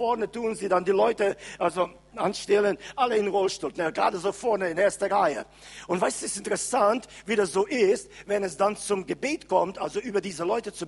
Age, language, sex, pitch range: 50-69, German, male, 200-275 Hz